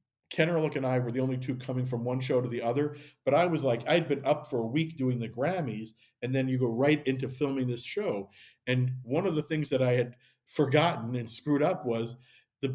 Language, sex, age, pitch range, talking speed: English, male, 50-69, 120-145 Hz, 240 wpm